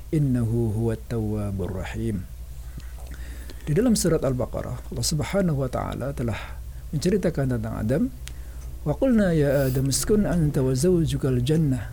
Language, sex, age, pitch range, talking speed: Indonesian, male, 60-79, 115-150 Hz, 95 wpm